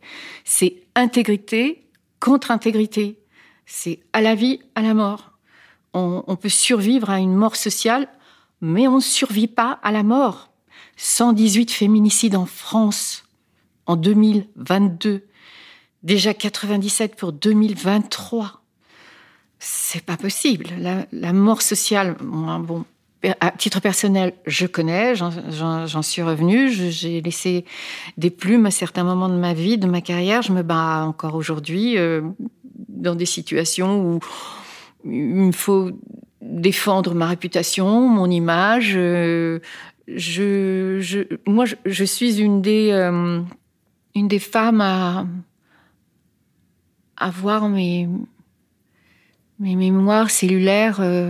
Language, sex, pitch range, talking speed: French, female, 175-220 Hz, 125 wpm